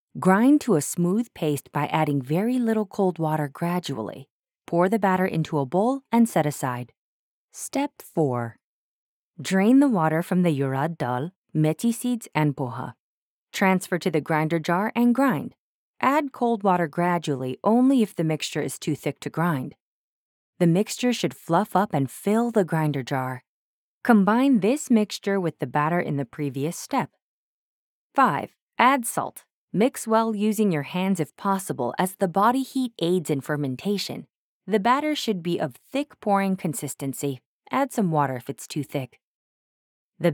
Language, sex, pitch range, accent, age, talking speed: English, female, 150-220 Hz, American, 20-39, 160 wpm